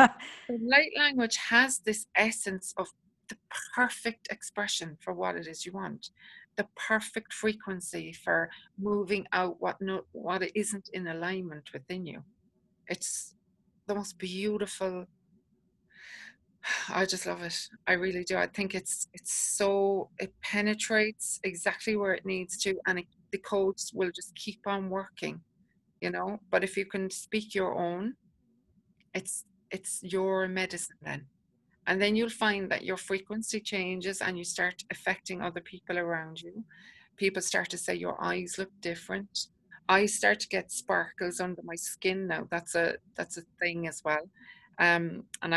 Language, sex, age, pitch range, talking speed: English, female, 40-59, 175-200 Hz, 150 wpm